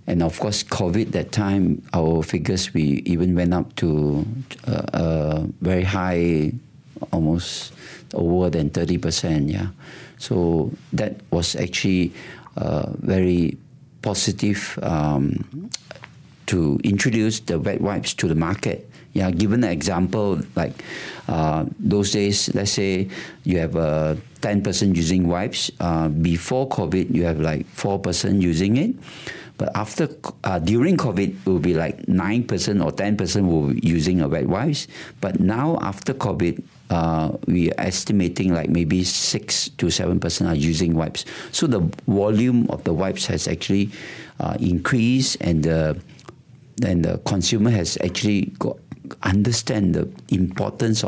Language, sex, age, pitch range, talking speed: English, male, 50-69, 80-105 Hz, 145 wpm